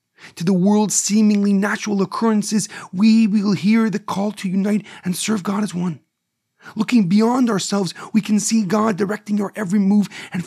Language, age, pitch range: English, 40-59, 180-215 Hz